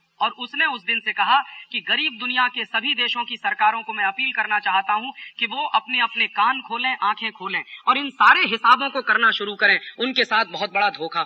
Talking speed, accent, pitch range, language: 220 wpm, native, 220-330 Hz, Hindi